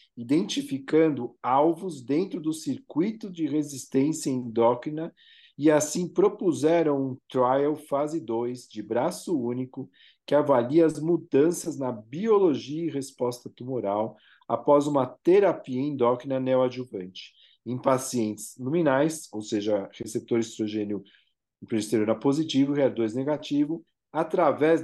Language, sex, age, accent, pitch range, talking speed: Portuguese, male, 40-59, Brazilian, 125-165 Hz, 110 wpm